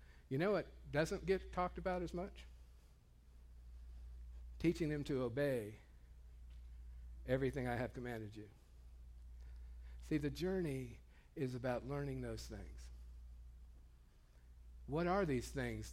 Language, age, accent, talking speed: English, 50-69, American, 115 wpm